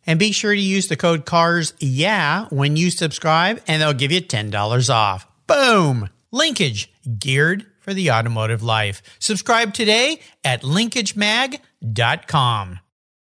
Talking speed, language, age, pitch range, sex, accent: 130 wpm, English, 50-69, 130-210 Hz, male, American